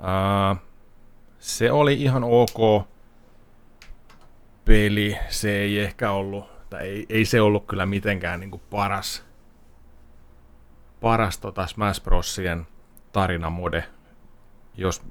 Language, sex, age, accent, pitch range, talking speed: Finnish, male, 30-49, native, 90-115 Hz, 100 wpm